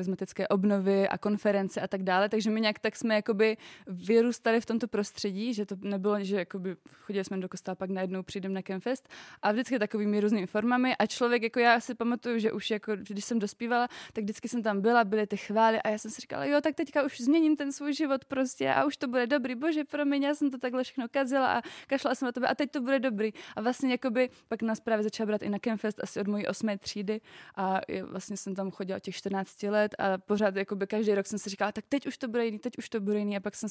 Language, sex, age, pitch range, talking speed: Slovak, female, 20-39, 200-235 Hz, 245 wpm